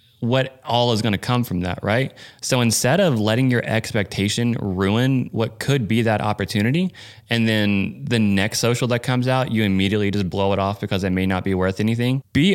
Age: 20-39